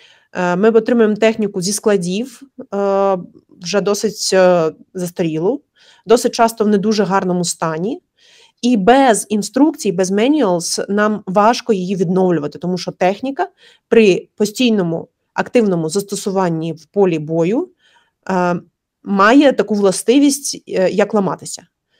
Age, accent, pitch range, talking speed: 30-49, native, 185-240 Hz, 105 wpm